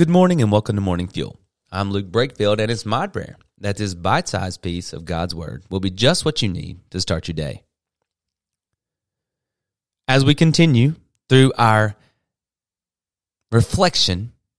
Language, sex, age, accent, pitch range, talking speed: English, male, 30-49, American, 95-135 Hz, 150 wpm